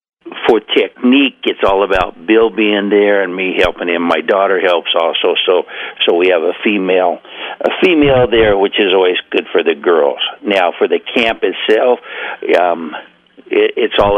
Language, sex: English, male